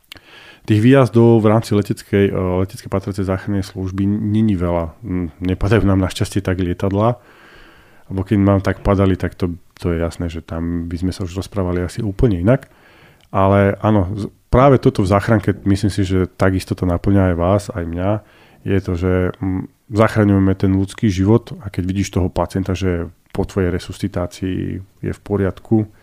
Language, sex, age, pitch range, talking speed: Slovak, male, 30-49, 90-105 Hz, 165 wpm